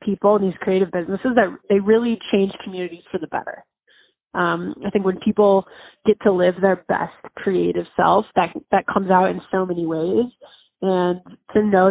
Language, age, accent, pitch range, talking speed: English, 20-39, American, 180-210 Hz, 180 wpm